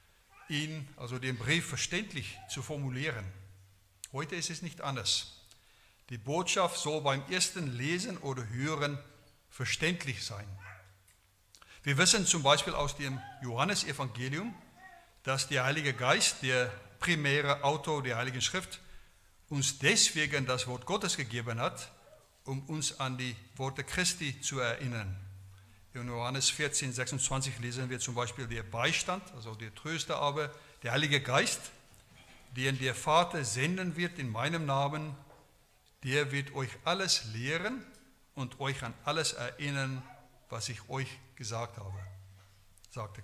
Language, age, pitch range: German, 60-79, 120-155 Hz